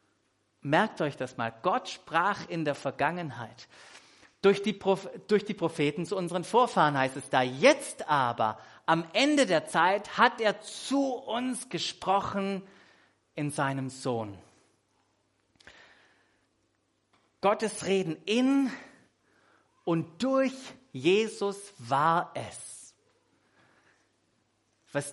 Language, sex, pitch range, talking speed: German, male, 130-195 Hz, 100 wpm